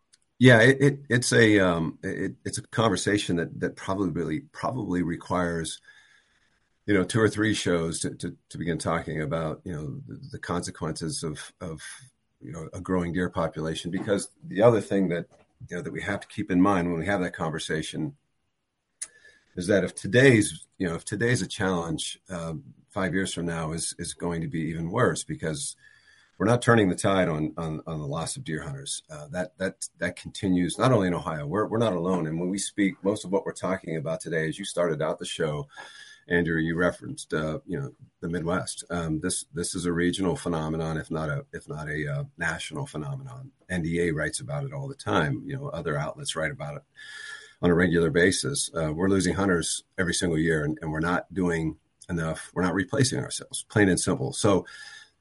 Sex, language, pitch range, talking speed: male, English, 85-115 Hz, 205 wpm